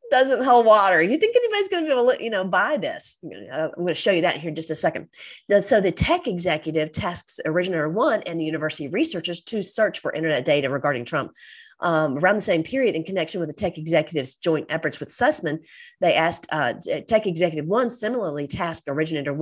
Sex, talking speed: female, 210 wpm